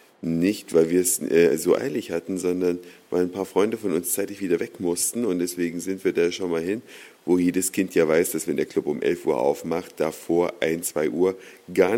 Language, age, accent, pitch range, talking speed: German, 50-69, German, 95-140 Hz, 225 wpm